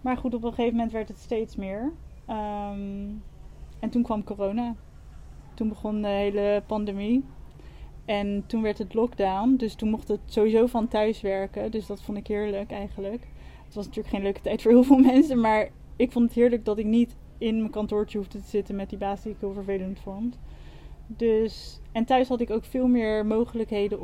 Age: 20-39